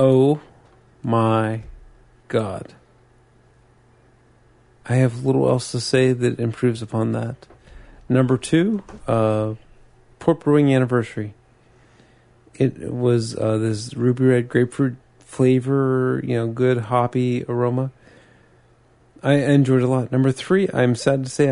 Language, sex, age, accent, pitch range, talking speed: English, male, 40-59, American, 120-130 Hz, 120 wpm